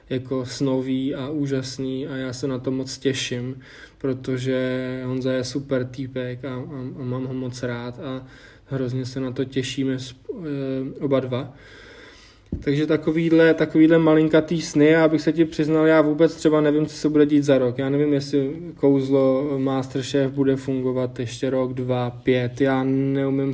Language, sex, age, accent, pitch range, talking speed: Czech, male, 20-39, native, 130-145 Hz, 160 wpm